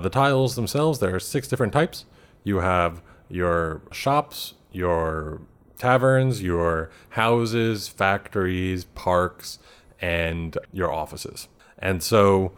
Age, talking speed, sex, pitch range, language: 30-49, 110 wpm, male, 85-110 Hz, English